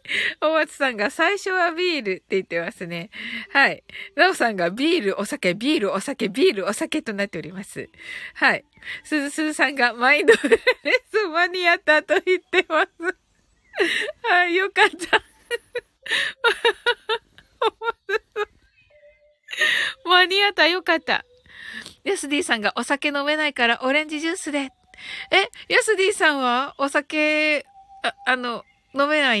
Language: Japanese